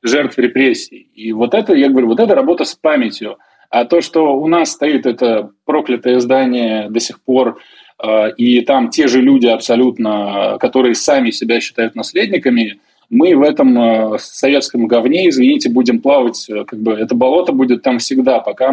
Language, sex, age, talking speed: Russian, male, 20-39, 165 wpm